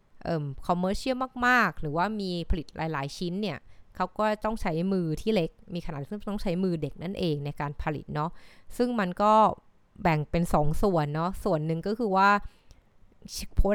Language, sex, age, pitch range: Thai, female, 20-39, 155-205 Hz